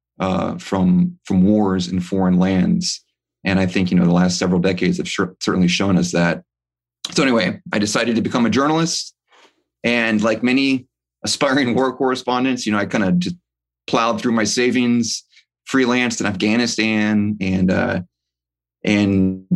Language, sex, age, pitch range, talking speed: English, male, 30-49, 90-115 Hz, 160 wpm